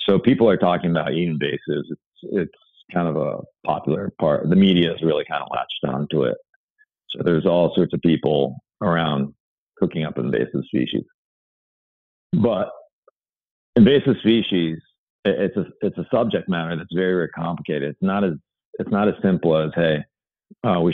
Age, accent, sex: 40-59, American, male